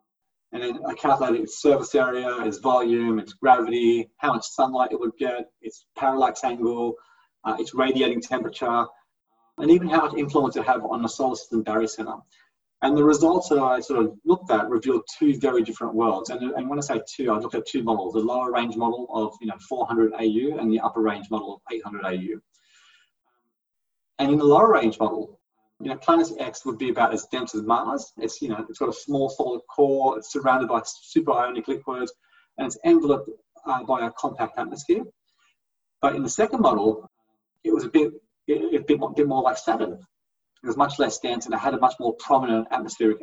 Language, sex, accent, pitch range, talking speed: English, male, Australian, 110-170 Hz, 205 wpm